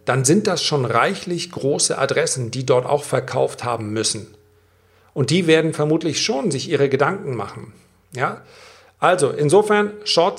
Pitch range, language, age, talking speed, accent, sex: 105-145 Hz, German, 40-59, 145 wpm, German, male